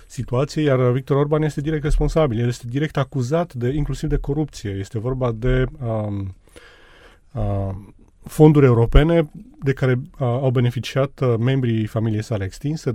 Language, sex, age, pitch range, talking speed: Romanian, male, 30-49, 110-140 Hz, 150 wpm